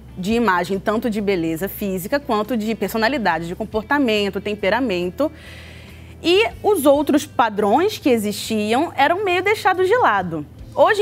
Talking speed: 130 wpm